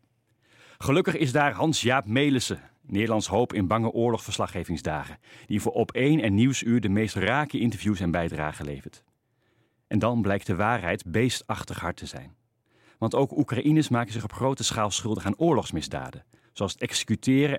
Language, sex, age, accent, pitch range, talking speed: Dutch, male, 40-59, Dutch, 105-130 Hz, 155 wpm